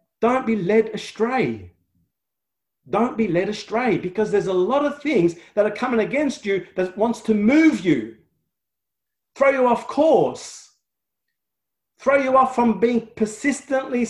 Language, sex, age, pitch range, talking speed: English, male, 40-59, 135-225 Hz, 145 wpm